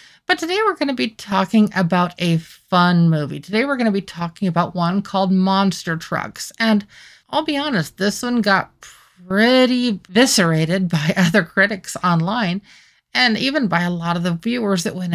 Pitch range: 170-210 Hz